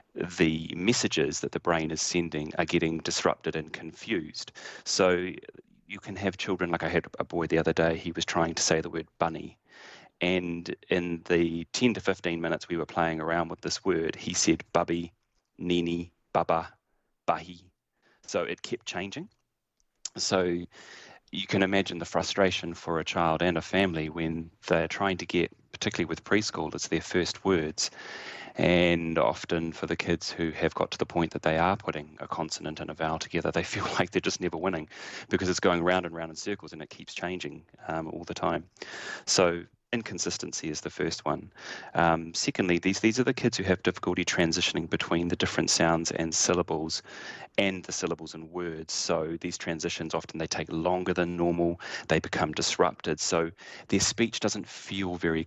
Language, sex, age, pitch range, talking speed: English, male, 30-49, 80-90 Hz, 185 wpm